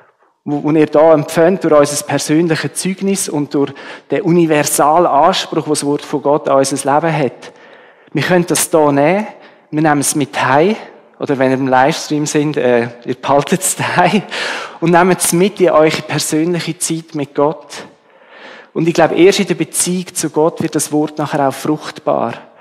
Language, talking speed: German, 180 wpm